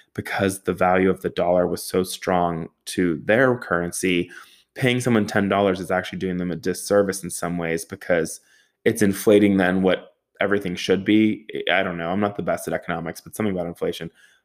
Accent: American